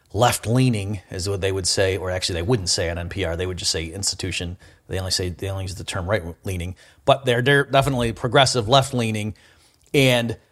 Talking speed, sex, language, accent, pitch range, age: 195 wpm, male, English, American, 100-125 Hz, 40-59